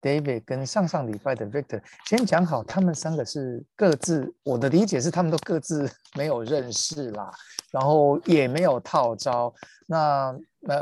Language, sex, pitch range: Chinese, male, 120-160 Hz